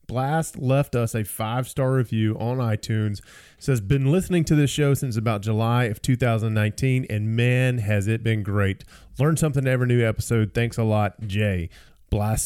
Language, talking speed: English, 180 wpm